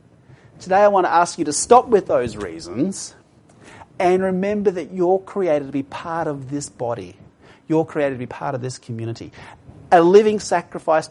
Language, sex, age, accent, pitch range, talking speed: English, male, 30-49, Australian, 150-200 Hz, 180 wpm